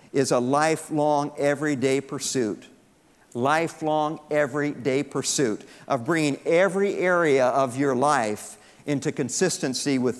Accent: American